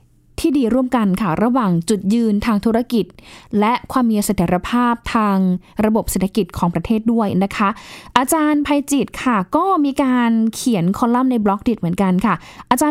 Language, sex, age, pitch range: Thai, female, 10-29, 205-265 Hz